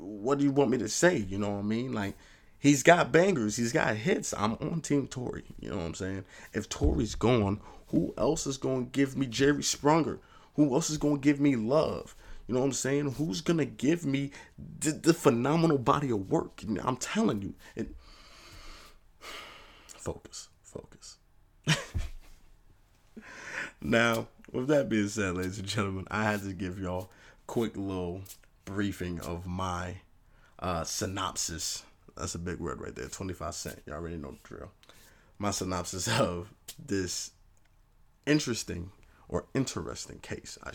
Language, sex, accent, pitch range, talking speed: English, male, American, 90-115 Hz, 170 wpm